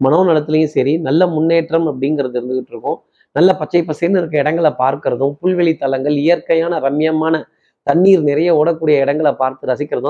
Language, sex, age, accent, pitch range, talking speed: Tamil, male, 30-49, native, 140-175 Hz, 130 wpm